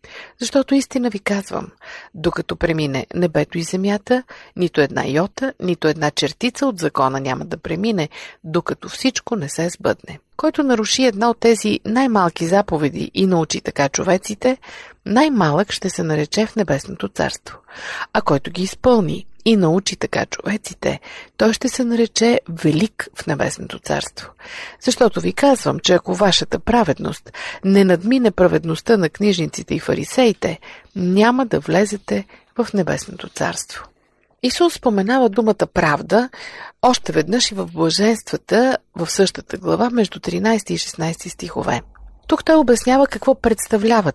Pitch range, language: 170-235 Hz, Bulgarian